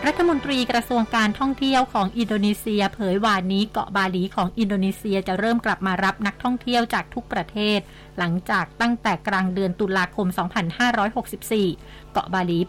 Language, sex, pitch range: Thai, female, 185-225 Hz